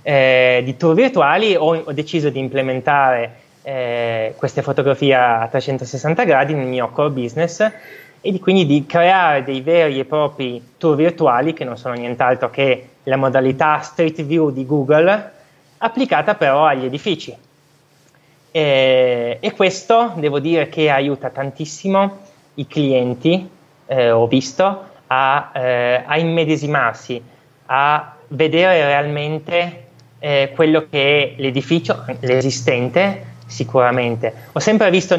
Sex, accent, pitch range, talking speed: male, native, 135-170 Hz, 125 wpm